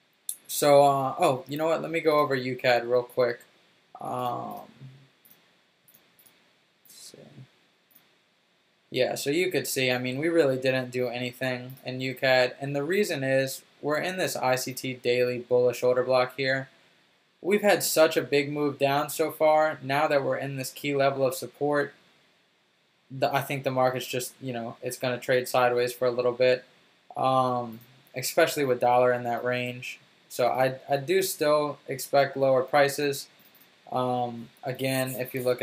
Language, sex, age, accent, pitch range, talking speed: English, male, 20-39, American, 125-140 Hz, 165 wpm